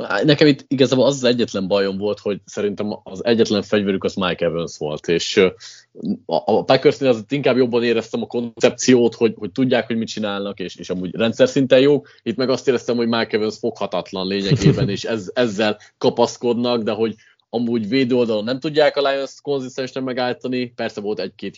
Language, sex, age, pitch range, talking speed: Hungarian, male, 20-39, 100-130 Hz, 180 wpm